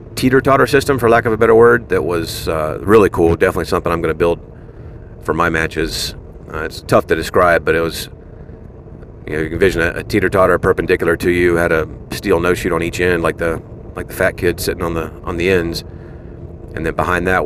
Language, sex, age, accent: English, male, 40-59, American